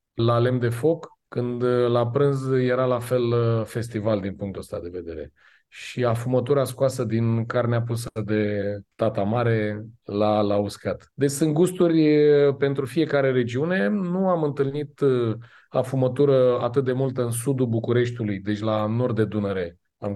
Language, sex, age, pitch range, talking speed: Romanian, male, 30-49, 115-160 Hz, 150 wpm